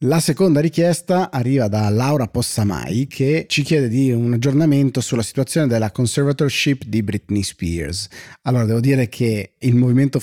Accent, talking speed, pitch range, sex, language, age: native, 155 wpm, 105-135 Hz, male, Italian, 30-49